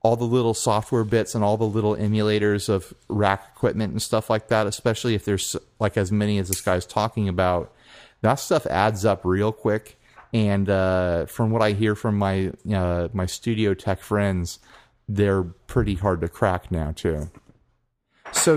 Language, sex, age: English, male, 30-49